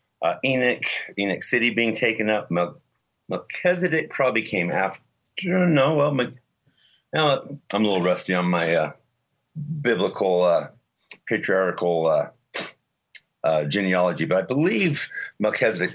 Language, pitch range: English, 85-125 Hz